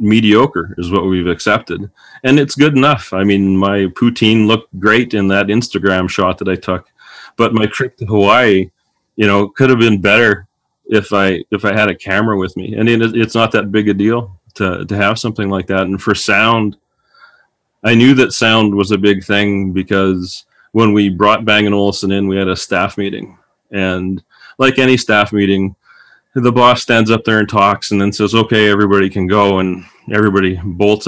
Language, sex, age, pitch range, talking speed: English, male, 30-49, 95-115 Hz, 195 wpm